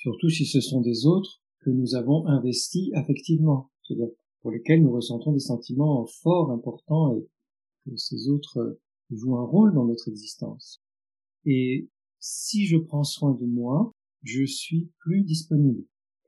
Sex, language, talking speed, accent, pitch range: male, French, 150 wpm, French, 125-165 Hz